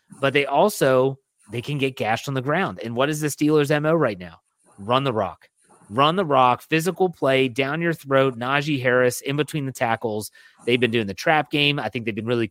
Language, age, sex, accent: English, 30-49, male, American